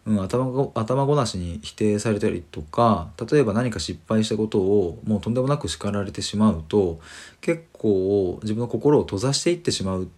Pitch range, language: 85-130 Hz, Japanese